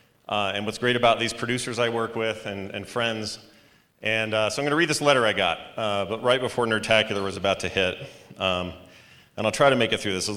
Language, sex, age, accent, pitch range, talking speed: English, male, 40-59, American, 105-135 Hz, 250 wpm